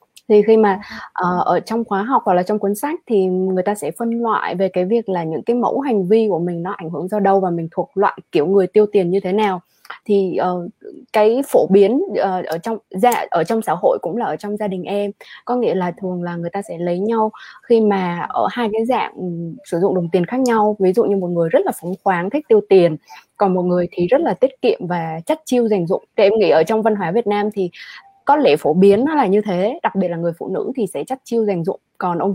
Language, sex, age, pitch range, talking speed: Vietnamese, female, 20-39, 180-225 Hz, 265 wpm